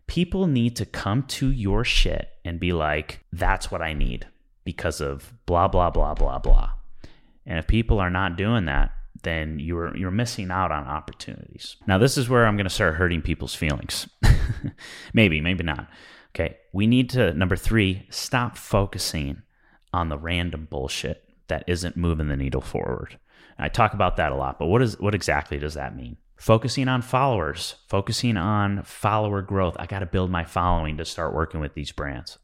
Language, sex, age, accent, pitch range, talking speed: English, male, 30-49, American, 80-105 Hz, 185 wpm